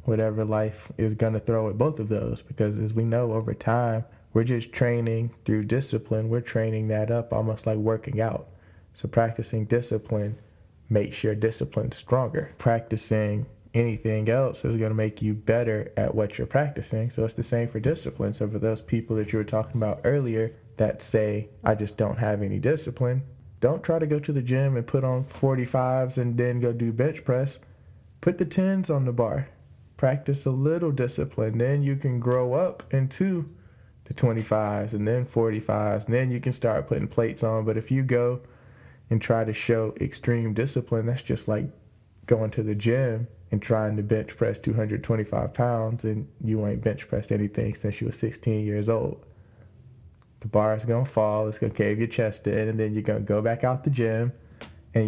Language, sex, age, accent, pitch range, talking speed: English, male, 20-39, American, 110-125 Hz, 195 wpm